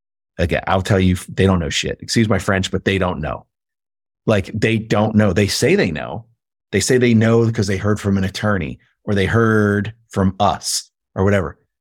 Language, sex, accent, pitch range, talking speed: English, male, American, 90-110 Hz, 205 wpm